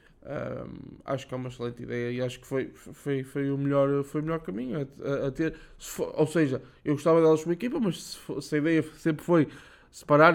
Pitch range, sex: 130-155 Hz, male